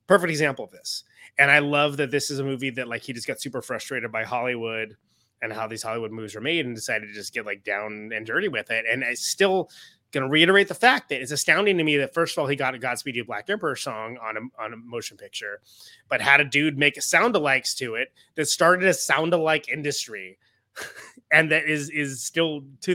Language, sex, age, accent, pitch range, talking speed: English, male, 20-39, American, 115-165 Hz, 230 wpm